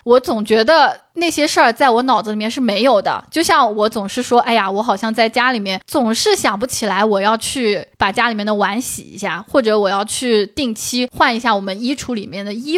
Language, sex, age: Chinese, female, 20-39